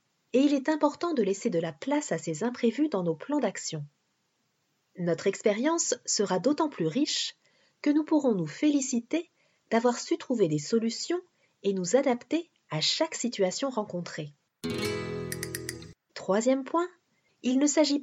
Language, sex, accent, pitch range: French, female, French, 185-285 Hz